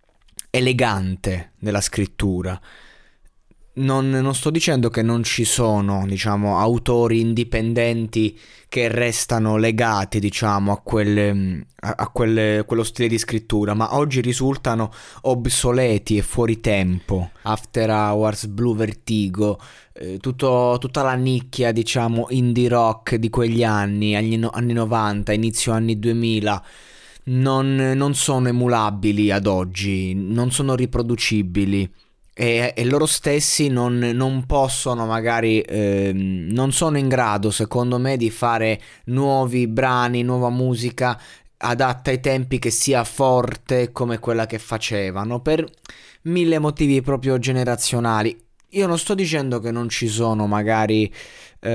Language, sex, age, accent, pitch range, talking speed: Italian, male, 20-39, native, 110-130 Hz, 125 wpm